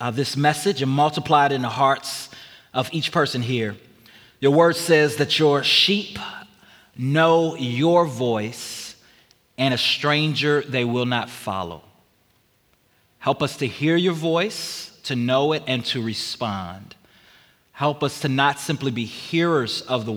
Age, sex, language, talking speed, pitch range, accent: 30-49, male, English, 150 wpm, 125-160 Hz, American